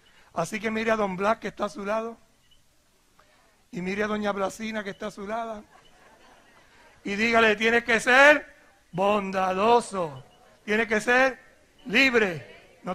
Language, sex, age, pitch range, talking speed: Spanish, male, 60-79, 175-215 Hz, 150 wpm